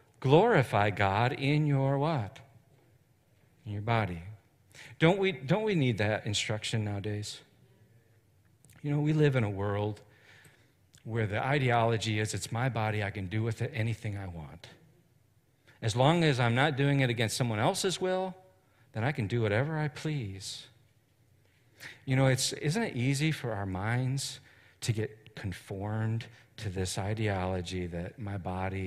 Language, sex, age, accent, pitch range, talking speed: English, male, 50-69, American, 105-135 Hz, 155 wpm